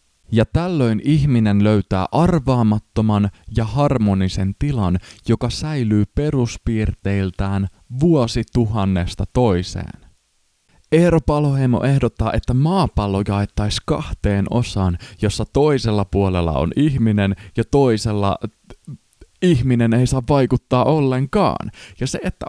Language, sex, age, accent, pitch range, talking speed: Finnish, male, 20-39, native, 95-125 Hz, 95 wpm